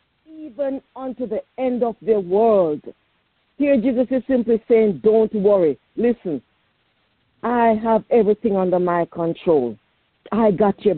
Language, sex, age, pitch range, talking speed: English, female, 50-69, 205-270 Hz, 130 wpm